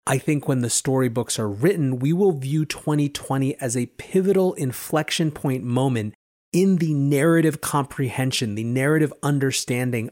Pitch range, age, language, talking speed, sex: 115-150 Hz, 30-49, English, 140 wpm, male